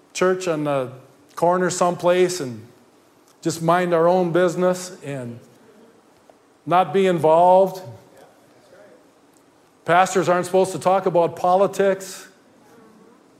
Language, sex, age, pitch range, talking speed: English, male, 50-69, 165-205 Hz, 100 wpm